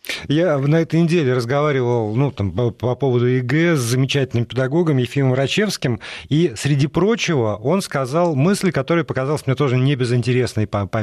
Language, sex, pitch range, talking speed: Russian, male, 120-165 Hz, 145 wpm